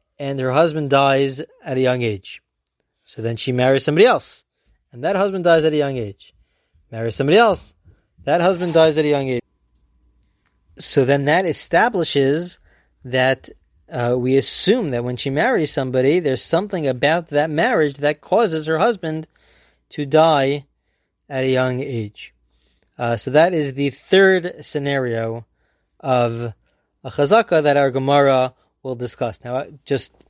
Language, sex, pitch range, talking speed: English, male, 125-155 Hz, 155 wpm